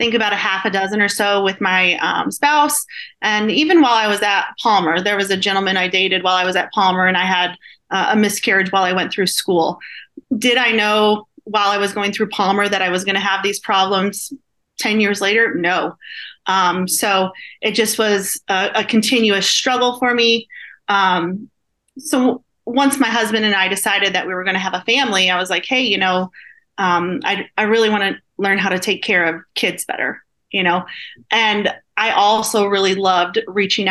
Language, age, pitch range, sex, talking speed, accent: English, 30-49, 190-230 Hz, female, 205 wpm, American